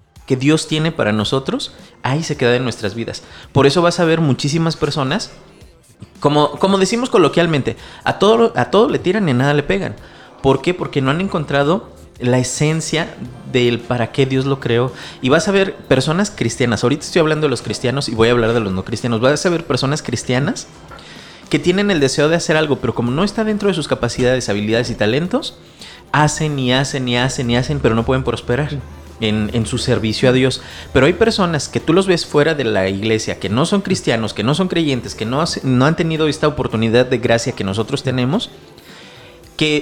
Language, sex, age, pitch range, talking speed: Spanish, male, 30-49, 115-155 Hz, 210 wpm